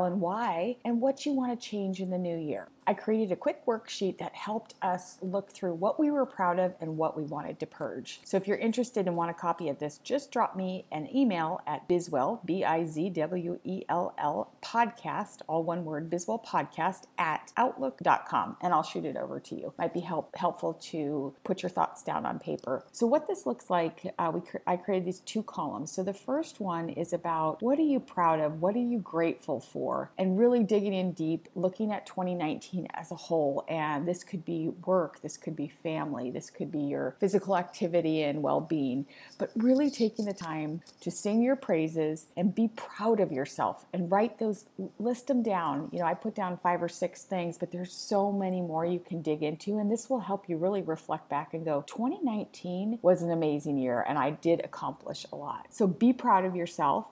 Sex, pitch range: female, 165-220 Hz